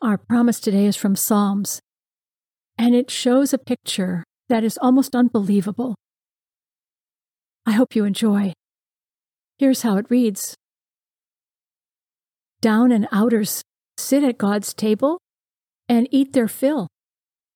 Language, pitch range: English, 205-255 Hz